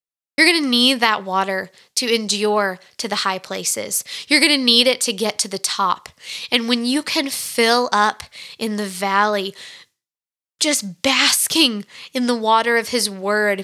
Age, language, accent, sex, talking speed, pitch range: 20-39, English, American, female, 170 wpm, 215-275 Hz